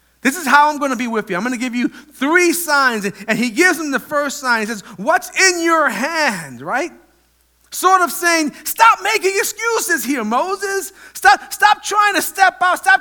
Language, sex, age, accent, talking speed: English, male, 40-59, American, 210 wpm